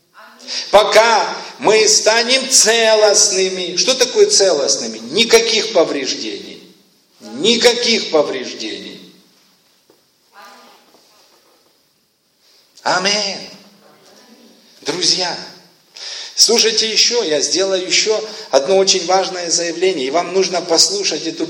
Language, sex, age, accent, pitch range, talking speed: Russian, male, 50-69, native, 185-220 Hz, 75 wpm